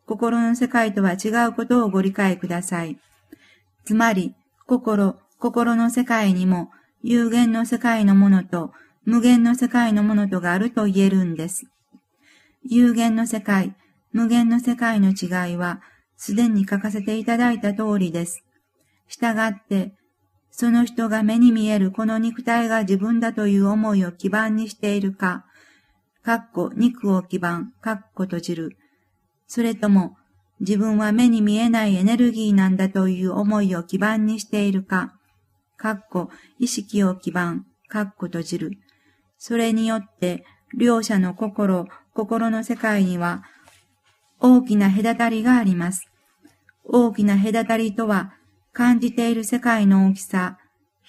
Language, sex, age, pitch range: Japanese, female, 50-69, 185-230 Hz